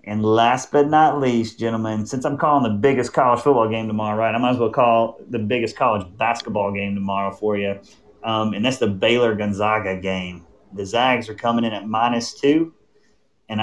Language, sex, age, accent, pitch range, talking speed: English, male, 30-49, American, 105-125 Hz, 195 wpm